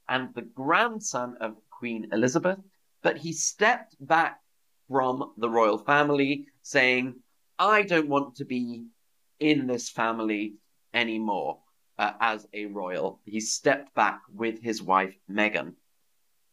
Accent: British